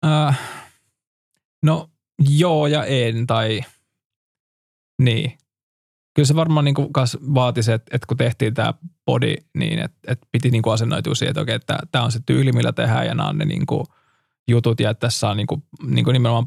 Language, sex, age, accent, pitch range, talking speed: Finnish, male, 20-39, native, 115-140 Hz, 180 wpm